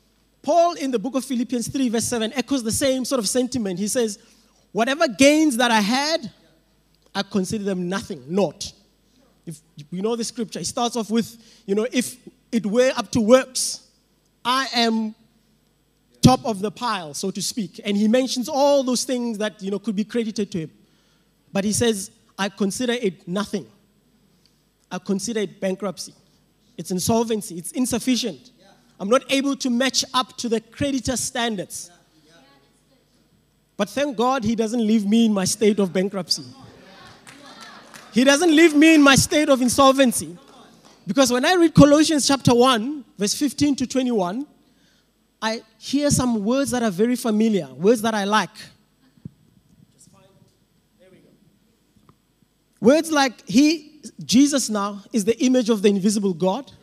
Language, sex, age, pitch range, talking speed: English, male, 20-39, 200-255 Hz, 155 wpm